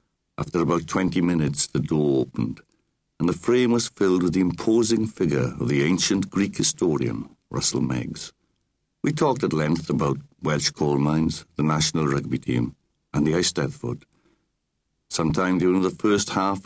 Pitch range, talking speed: 70-95 Hz, 155 wpm